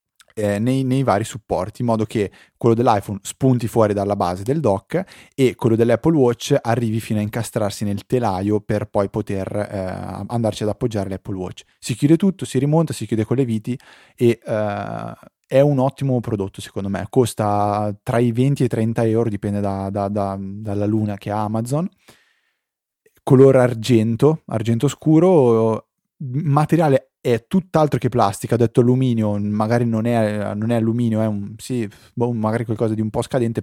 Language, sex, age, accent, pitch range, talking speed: Italian, male, 20-39, native, 105-125 Hz, 170 wpm